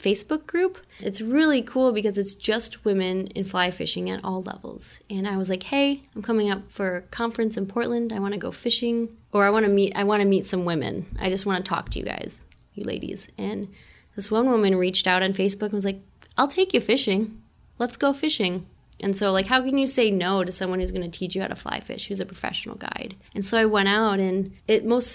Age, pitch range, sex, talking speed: 20-39, 185-230 Hz, female, 245 wpm